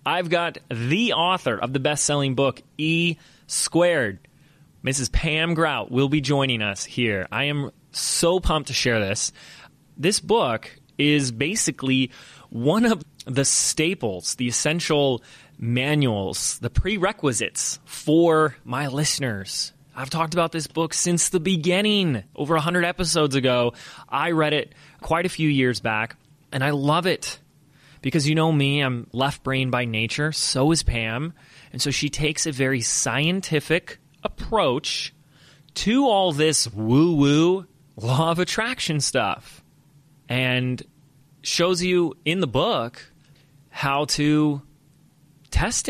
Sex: male